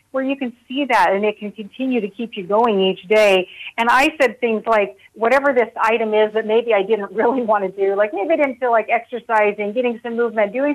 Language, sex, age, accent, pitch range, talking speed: English, female, 50-69, American, 205-260 Hz, 240 wpm